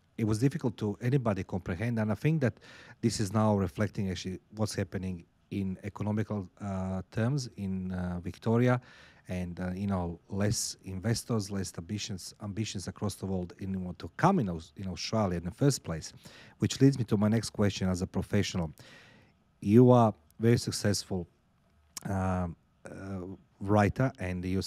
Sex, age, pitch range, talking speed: male, 40-59, 90-110 Hz, 165 wpm